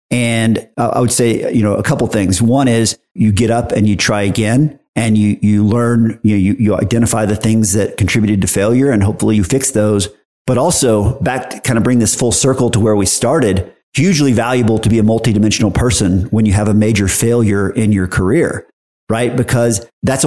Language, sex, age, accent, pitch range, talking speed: English, male, 50-69, American, 105-120 Hz, 210 wpm